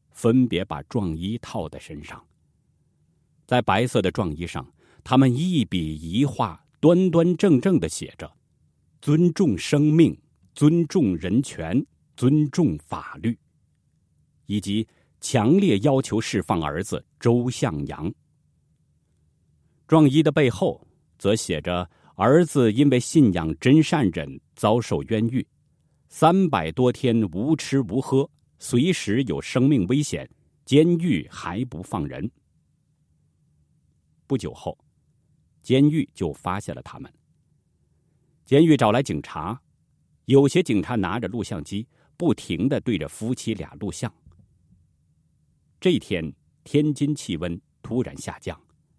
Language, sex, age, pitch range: Chinese, male, 50-69, 90-145 Hz